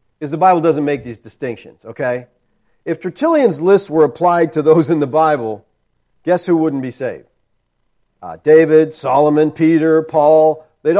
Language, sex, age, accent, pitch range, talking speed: English, male, 40-59, American, 130-195 Hz, 155 wpm